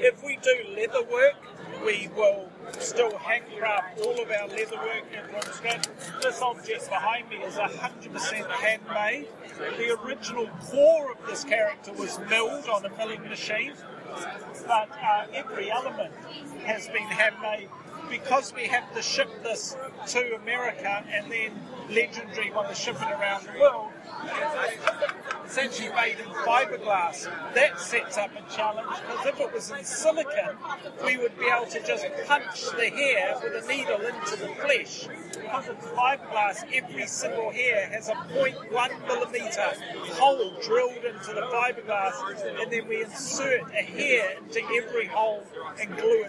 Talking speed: 150 wpm